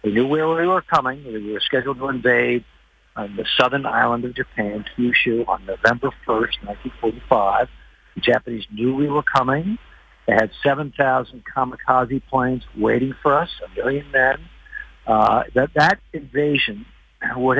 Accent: American